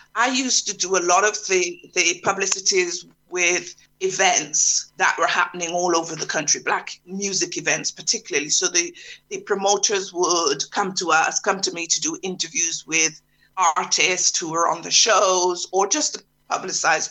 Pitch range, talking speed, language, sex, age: 180-300 Hz, 170 wpm, English, female, 50-69